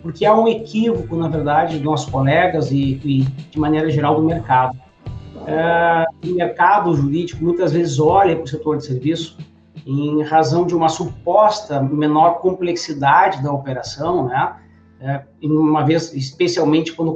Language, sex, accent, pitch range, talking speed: Portuguese, male, Brazilian, 150-185 Hz, 150 wpm